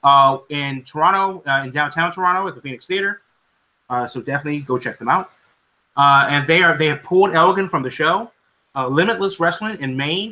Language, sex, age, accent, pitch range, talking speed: English, male, 30-49, American, 135-180 Hz, 190 wpm